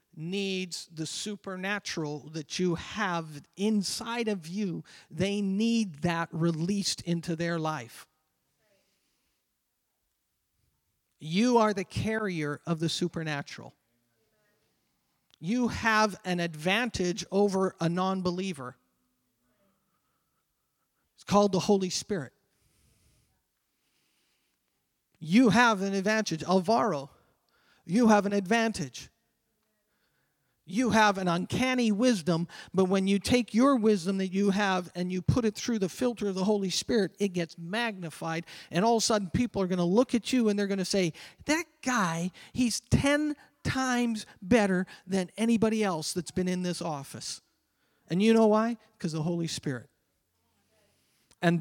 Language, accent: English, American